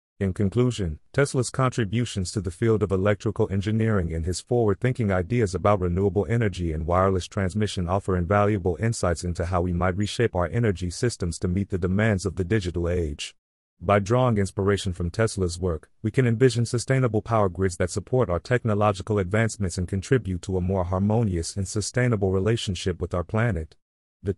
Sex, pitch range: male, 90-115 Hz